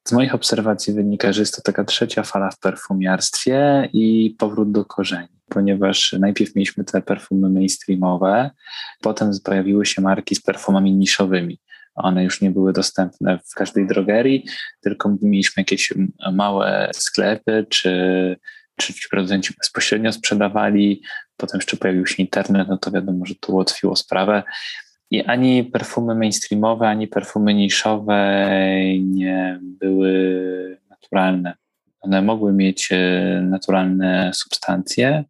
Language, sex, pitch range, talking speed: Polish, male, 95-105 Hz, 125 wpm